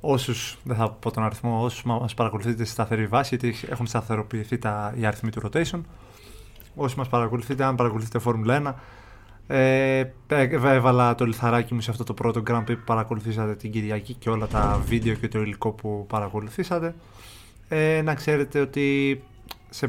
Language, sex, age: Greek, male, 20-39